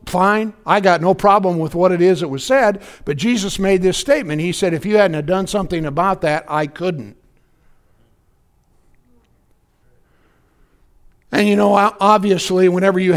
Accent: American